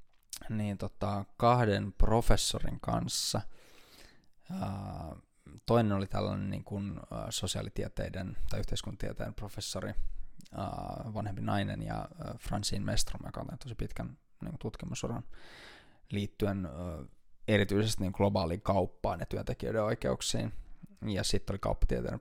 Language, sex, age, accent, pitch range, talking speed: Finnish, male, 20-39, native, 95-110 Hz, 110 wpm